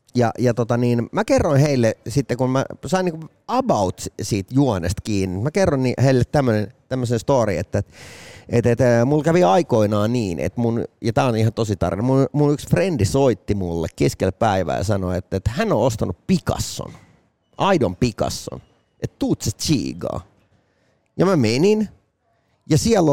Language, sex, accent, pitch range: Finnish, male, native, 100-150 Hz